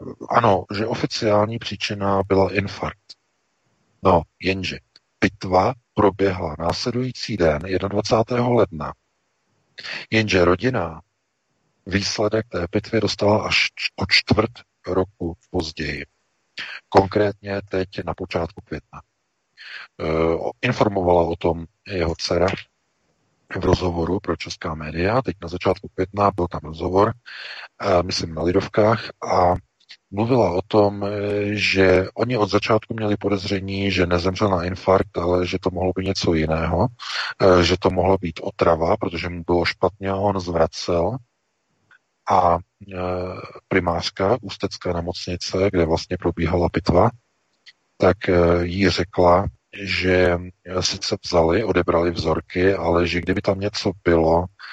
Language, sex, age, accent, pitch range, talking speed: Czech, male, 40-59, native, 85-100 Hz, 115 wpm